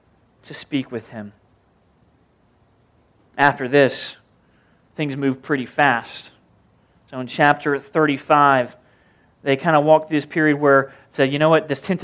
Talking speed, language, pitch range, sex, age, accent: 145 wpm, English, 135-165 Hz, male, 30-49, American